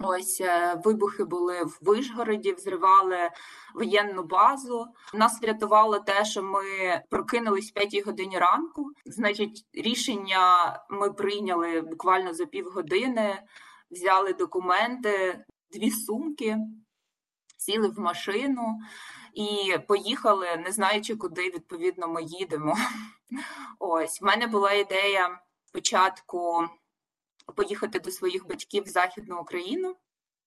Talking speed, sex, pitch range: 105 wpm, female, 180-225 Hz